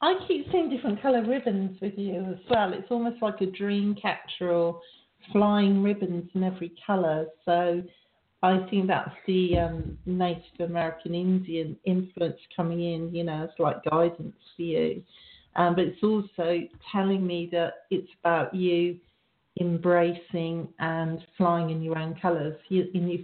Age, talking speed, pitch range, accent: 50-69, 155 wpm, 170-185 Hz, British